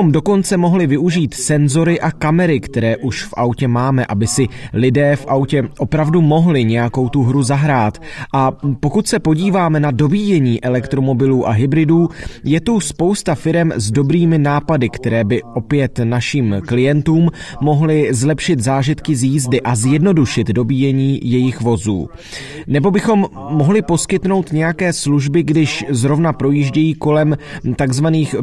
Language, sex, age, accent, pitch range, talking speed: Czech, male, 30-49, native, 130-165 Hz, 135 wpm